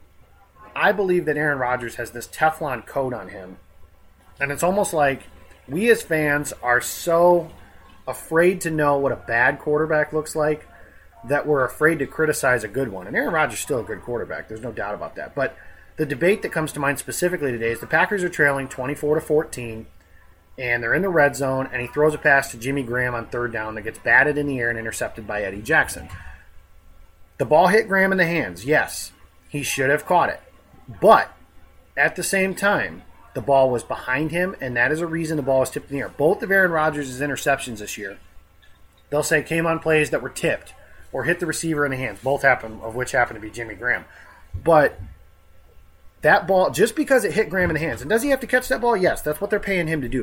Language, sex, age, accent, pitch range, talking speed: English, male, 30-49, American, 115-165 Hz, 225 wpm